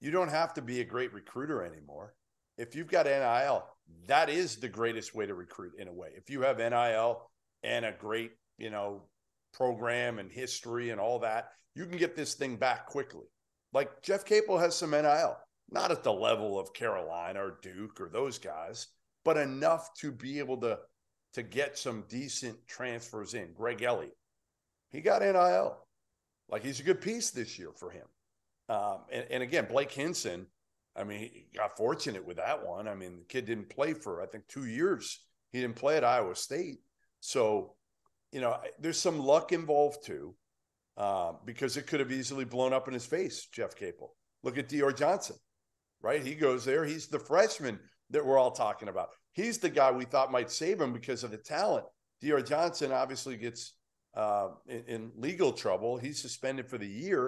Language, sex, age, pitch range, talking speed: English, male, 50-69, 115-150 Hz, 190 wpm